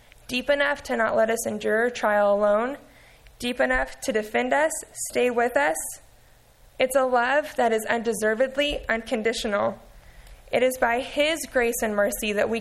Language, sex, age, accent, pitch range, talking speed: English, female, 20-39, American, 210-260 Hz, 155 wpm